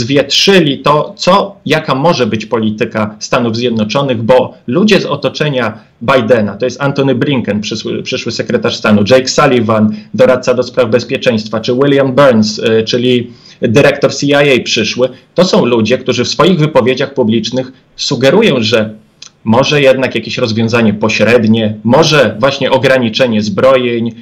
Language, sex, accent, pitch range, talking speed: Polish, male, native, 120-160 Hz, 135 wpm